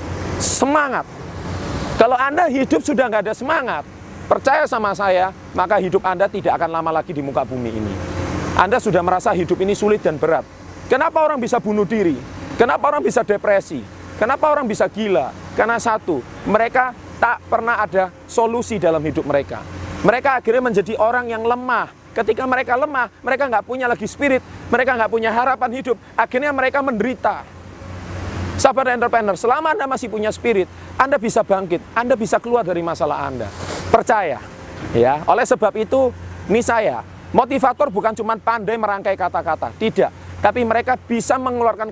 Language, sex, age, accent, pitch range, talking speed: Indonesian, male, 30-49, native, 175-240 Hz, 155 wpm